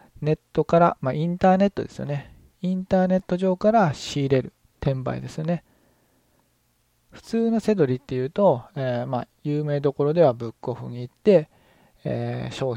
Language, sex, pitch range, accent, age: Japanese, male, 125-175 Hz, native, 20-39